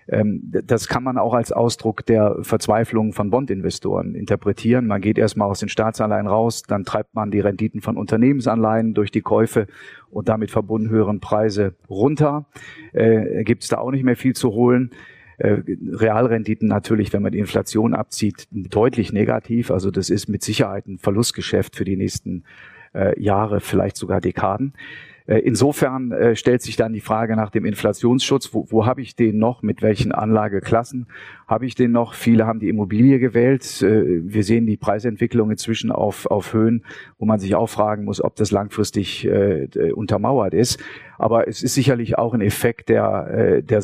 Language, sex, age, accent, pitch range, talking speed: German, male, 40-59, German, 105-120 Hz, 175 wpm